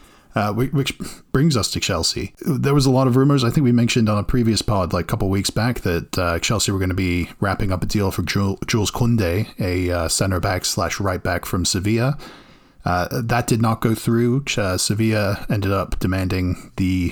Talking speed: 215 wpm